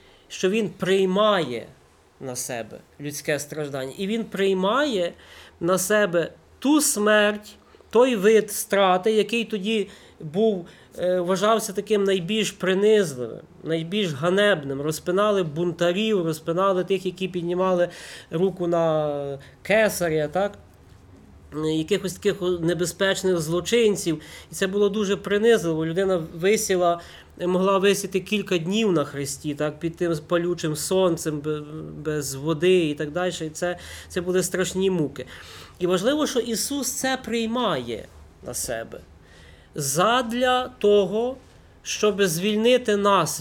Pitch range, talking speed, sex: 165-210 Hz, 110 wpm, male